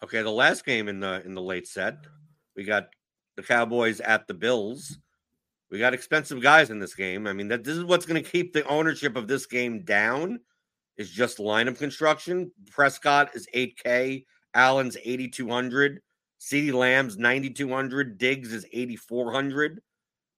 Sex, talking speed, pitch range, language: male, 160 wpm, 125-170 Hz, English